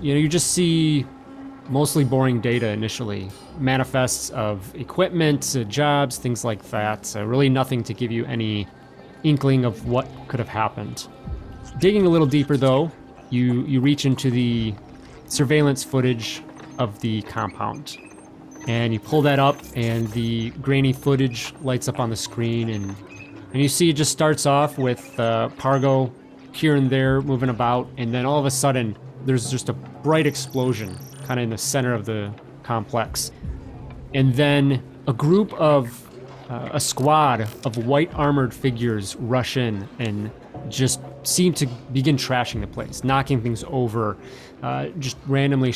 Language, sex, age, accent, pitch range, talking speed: English, male, 30-49, American, 115-140 Hz, 160 wpm